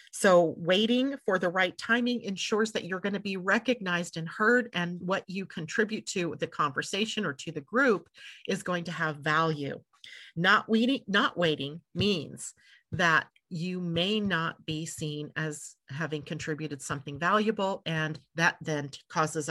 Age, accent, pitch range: 40-59, American, 155-210 Hz